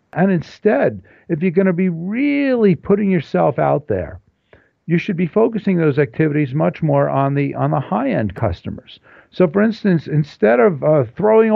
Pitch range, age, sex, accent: 130-180 Hz, 60-79, male, American